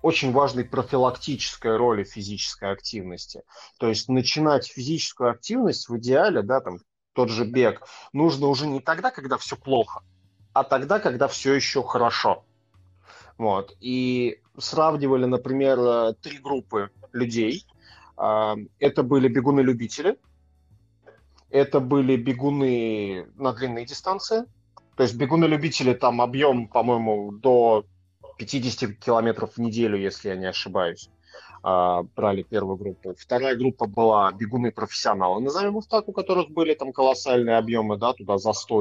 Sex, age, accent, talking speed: male, 30-49, native, 125 wpm